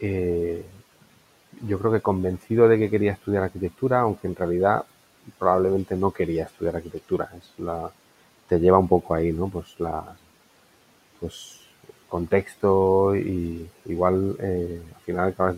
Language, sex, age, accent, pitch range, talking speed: Spanish, male, 30-49, Spanish, 90-105 Hz, 125 wpm